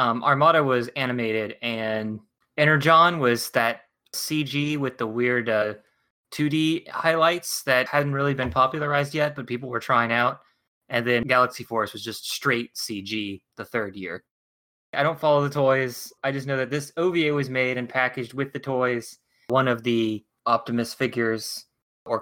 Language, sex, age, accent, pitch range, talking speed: English, male, 20-39, American, 115-140 Hz, 165 wpm